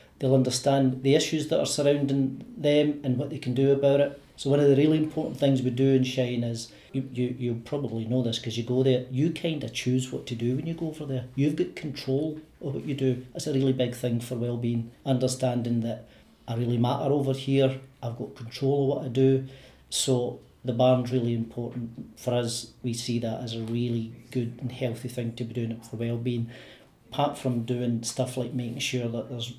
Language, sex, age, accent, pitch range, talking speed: English, male, 40-59, British, 120-135 Hz, 220 wpm